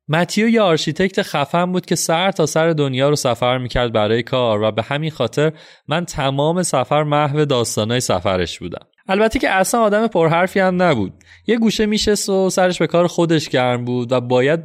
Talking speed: 185 wpm